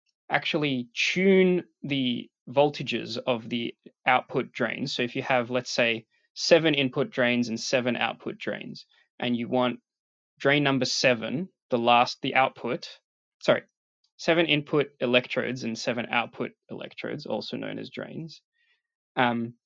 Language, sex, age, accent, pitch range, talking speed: English, male, 20-39, Australian, 120-150 Hz, 135 wpm